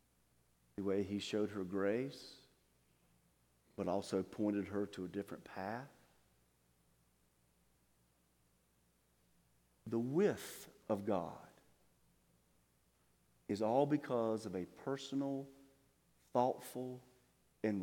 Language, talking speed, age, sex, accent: English, 90 wpm, 40-59, male, American